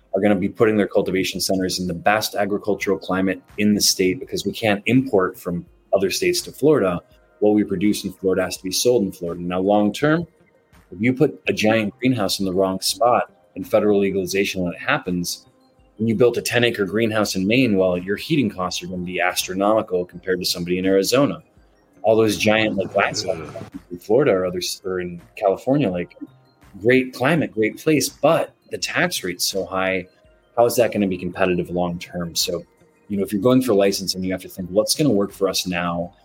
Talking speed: 210 wpm